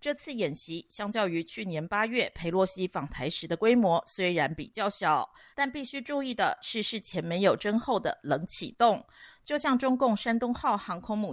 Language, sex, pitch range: Chinese, female, 180-240 Hz